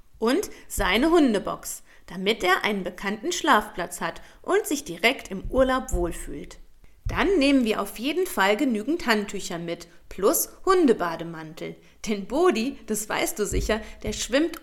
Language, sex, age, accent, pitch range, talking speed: German, female, 40-59, German, 195-310 Hz, 140 wpm